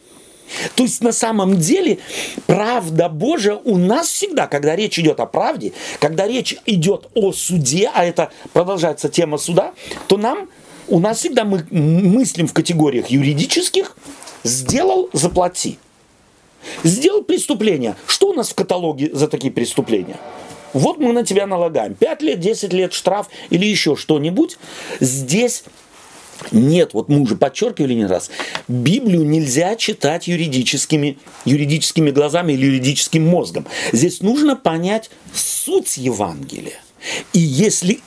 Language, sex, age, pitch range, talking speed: Russian, male, 40-59, 145-215 Hz, 130 wpm